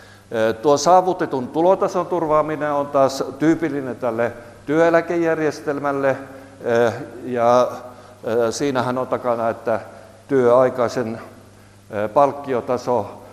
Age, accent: 60-79, native